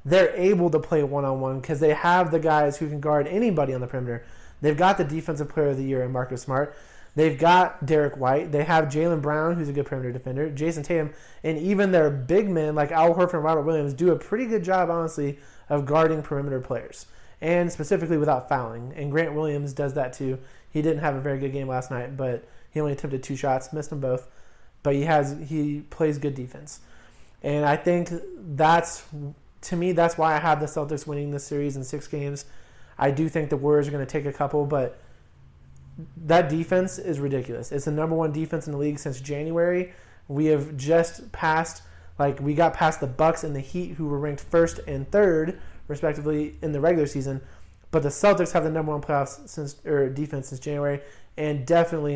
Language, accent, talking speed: English, American, 205 wpm